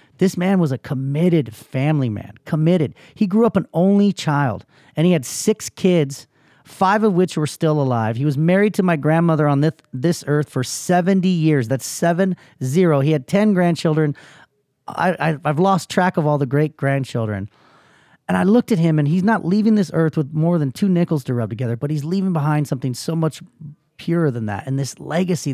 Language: English